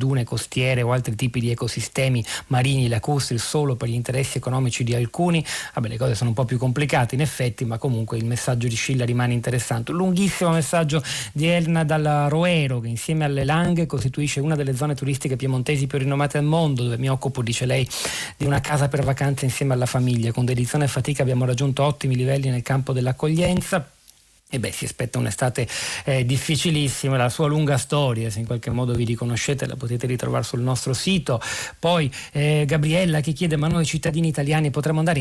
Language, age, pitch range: Italian, 40-59, 125-150 Hz